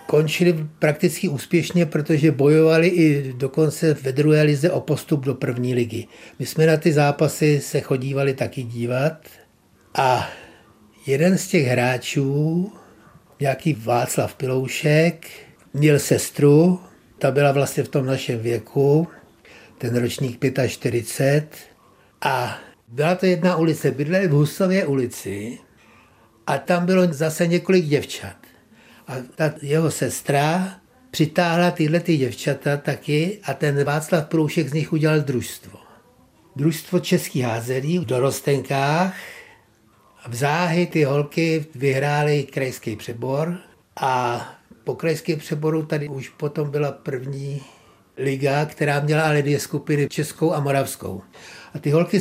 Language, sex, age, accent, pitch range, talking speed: Czech, male, 60-79, native, 135-165 Hz, 125 wpm